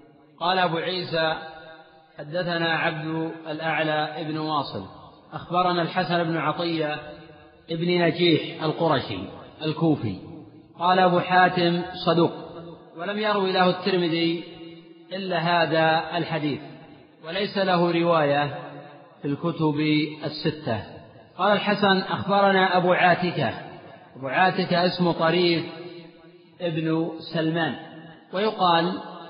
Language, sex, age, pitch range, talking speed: Arabic, male, 40-59, 160-180 Hz, 90 wpm